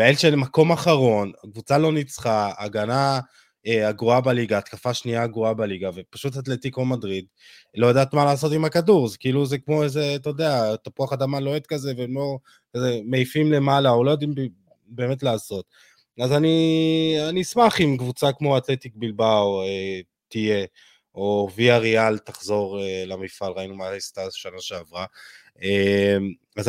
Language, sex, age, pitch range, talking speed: Hebrew, male, 20-39, 105-135 Hz, 150 wpm